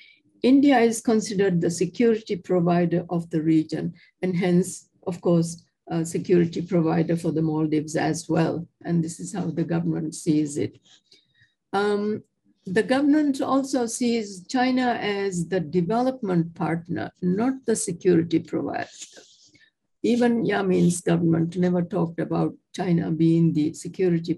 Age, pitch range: 60-79, 170-225 Hz